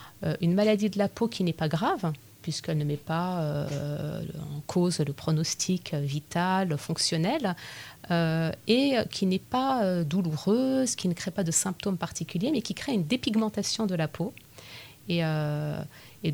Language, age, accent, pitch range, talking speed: French, 30-49, French, 160-215 Hz, 155 wpm